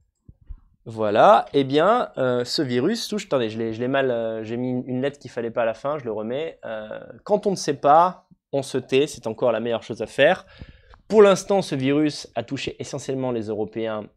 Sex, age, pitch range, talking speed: male, 20-39, 120-175 Hz, 225 wpm